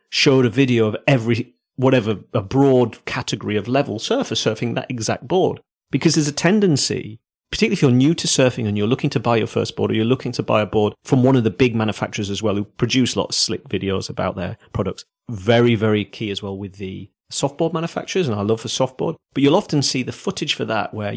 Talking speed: 230 wpm